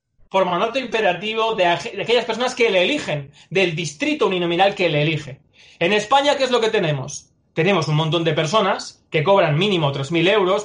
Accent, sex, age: Spanish, male, 20-39